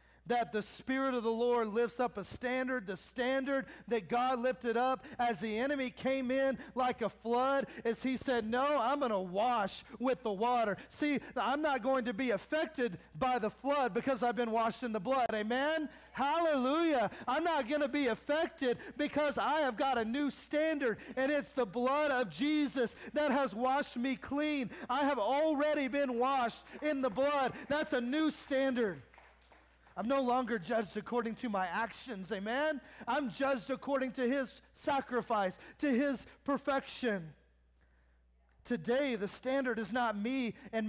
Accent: American